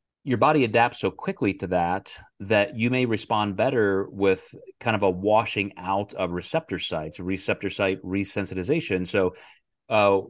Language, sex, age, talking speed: English, male, 30-49, 150 wpm